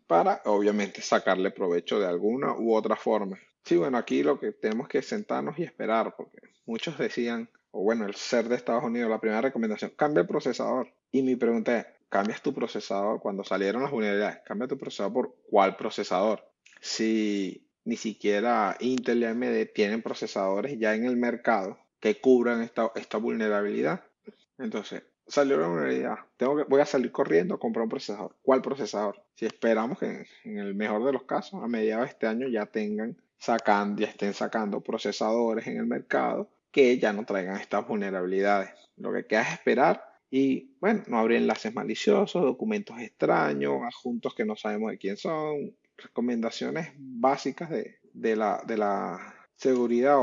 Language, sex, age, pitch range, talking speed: Spanish, male, 30-49, 105-130 Hz, 165 wpm